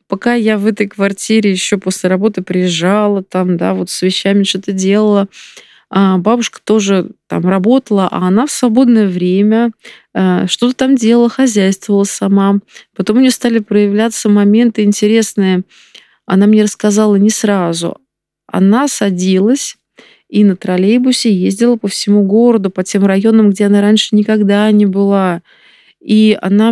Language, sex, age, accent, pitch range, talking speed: Russian, female, 20-39, native, 195-225 Hz, 140 wpm